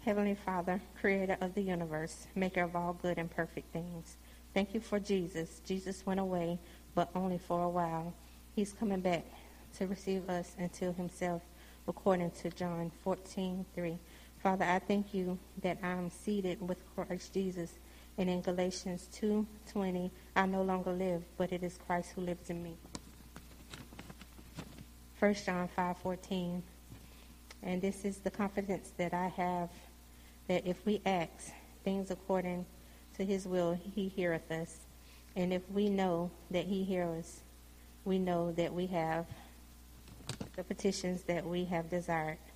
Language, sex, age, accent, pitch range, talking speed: English, female, 40-59, American, 170-190 Hz, 150 wpm